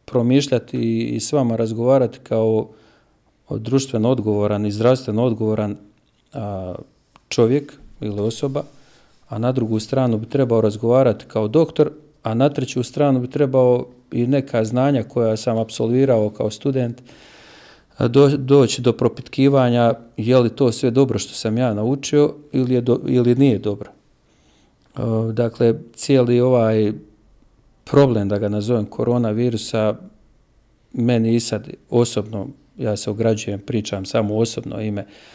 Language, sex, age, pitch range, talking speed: Croatian, male, 40-59, 110-130 Hz, 130 wpm